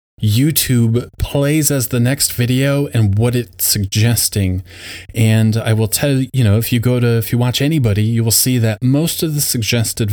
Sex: male